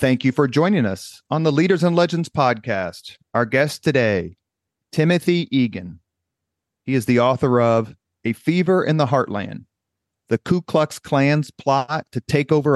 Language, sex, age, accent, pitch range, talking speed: English, male, 40-59, American, 100-135 Hz, 160 wpm